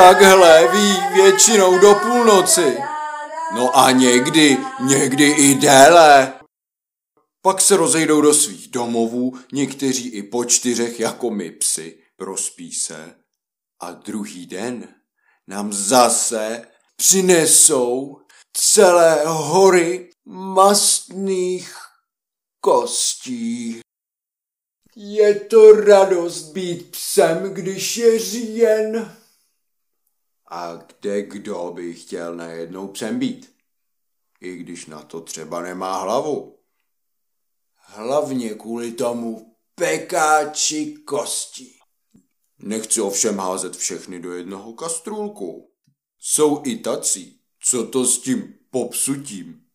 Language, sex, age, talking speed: Czech, male, 50-69, 95 wpm